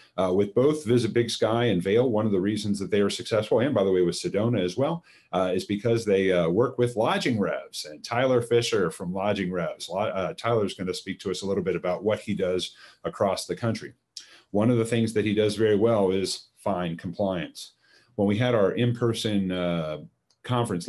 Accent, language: American, English